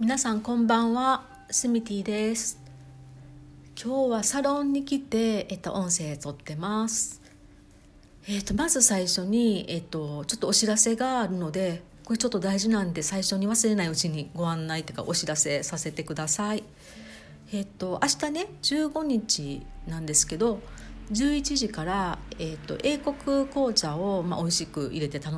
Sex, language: female, Japanese